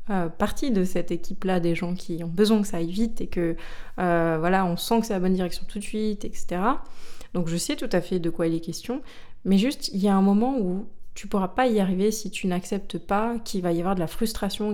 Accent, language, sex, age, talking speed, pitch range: French, French, female, 20-39, 260 wpm, 180-215 Hz